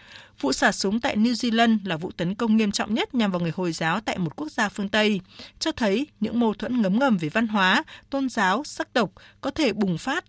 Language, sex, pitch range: Vietnamese, female, 185-245 Hz